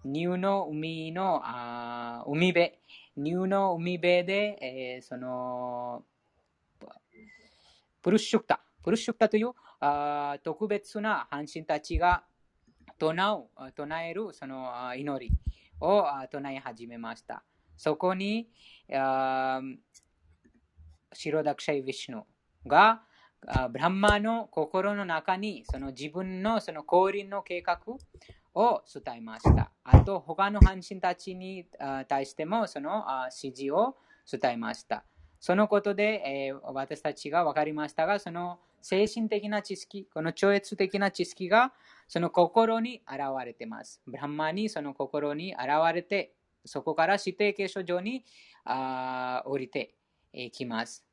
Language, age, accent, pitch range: Japanese, 20-39, Indian, 135-195 Hz